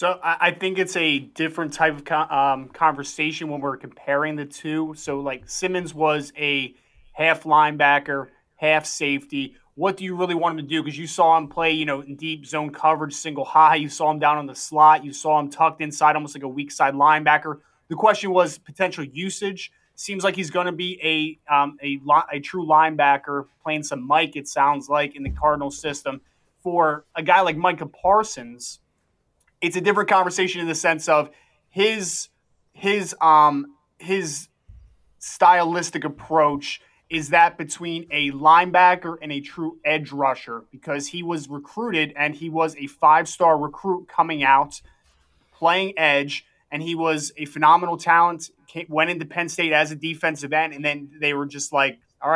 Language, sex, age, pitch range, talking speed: English, male, 20-39, 145-170 Hz, 180 wpm